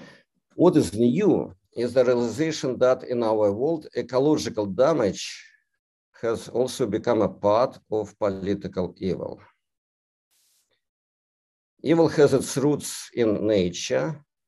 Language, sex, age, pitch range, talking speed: English, male, 50-69, 95-135 Hz, 110 wpm